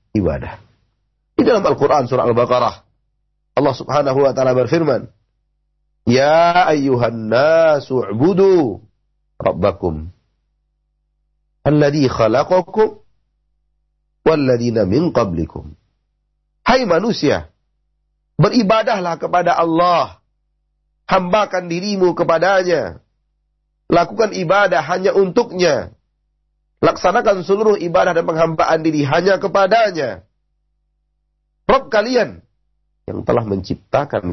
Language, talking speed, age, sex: Indonesian, 80 wpm, 40-59, male